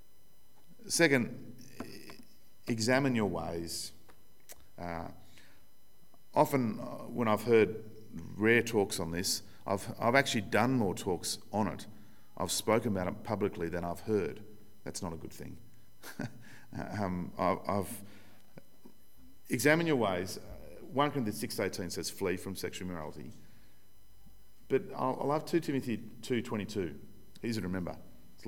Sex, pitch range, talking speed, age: male, 85-120 Hz, 130 wpm, 40-59